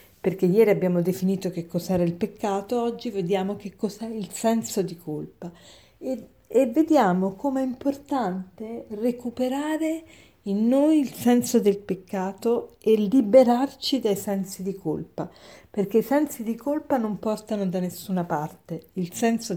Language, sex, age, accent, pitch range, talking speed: Italian, female, 50-69, native, 180-240 Hz, 140 wpm